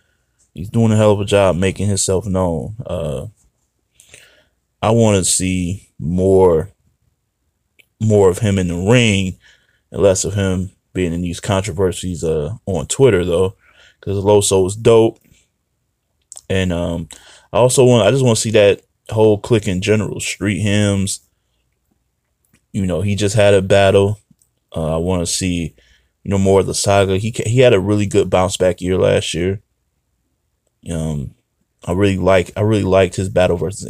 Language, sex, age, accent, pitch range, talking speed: English, male, 20-39, American, 90-105 Hz, 165 wpm